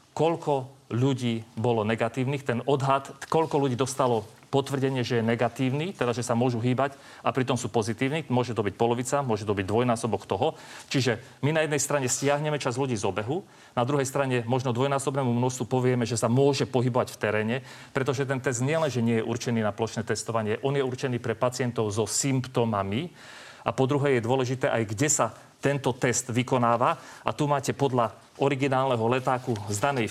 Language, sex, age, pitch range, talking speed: Slovak, male, 40-59, 120-140 Hz, 180 wpm